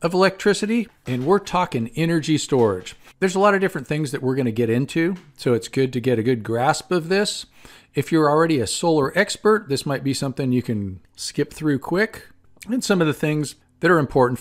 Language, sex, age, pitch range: English, male, 50-69, 125-180 Hz